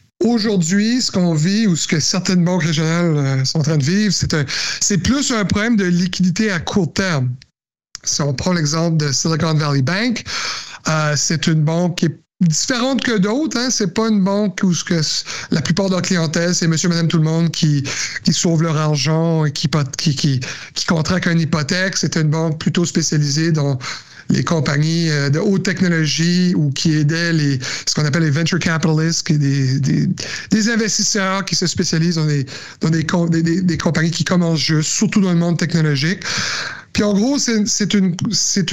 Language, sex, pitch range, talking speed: French, male, 155-190 Hz, 195 wpm